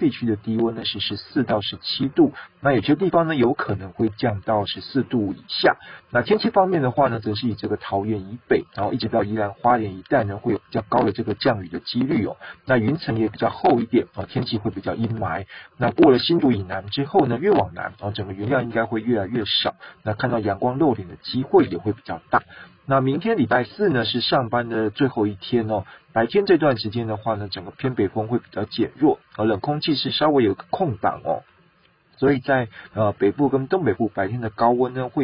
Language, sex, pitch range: Chinese, male, 105-130 Hz